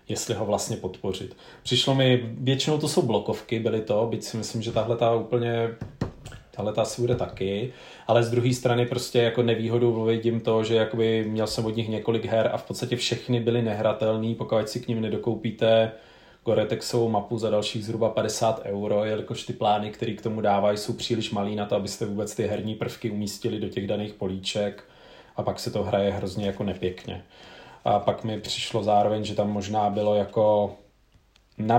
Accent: native